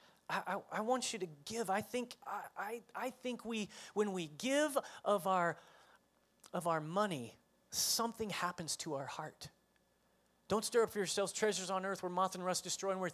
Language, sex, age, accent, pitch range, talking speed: English, male, 30-49, American, 165-215 Hz, 190 wpm